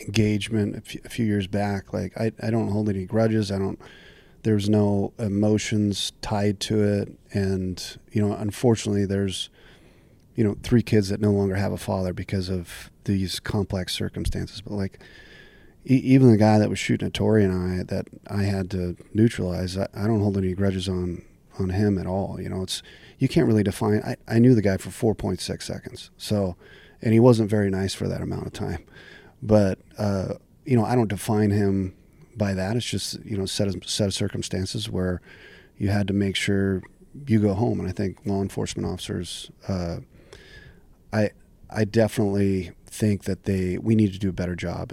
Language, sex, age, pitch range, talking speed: English, male, 30-49, 95-110 Hz, 190 wpm